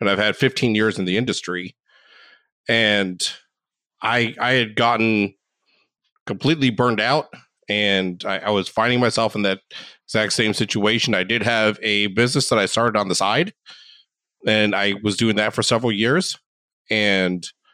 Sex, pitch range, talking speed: male, 105-125 Hz, 160 wpm